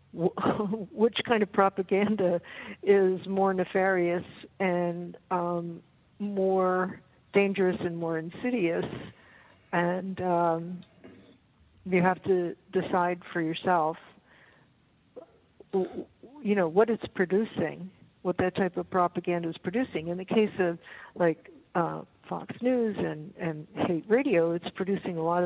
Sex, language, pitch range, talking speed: female, English, 175-200 Hz, 120 wpm